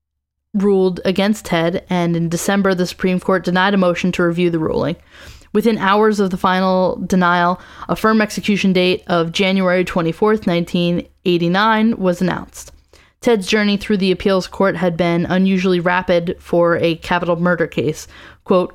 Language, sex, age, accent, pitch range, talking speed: English, female, 10-29, American, 170-195 Hz, 155 wpm